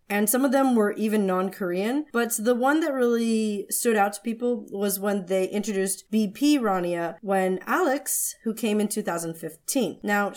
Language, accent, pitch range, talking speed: English, American, 190-230 Hz, 170 wpm